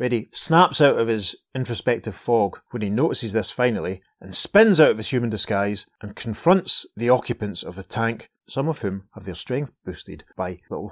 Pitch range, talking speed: 105-140 Hz, 190 wpm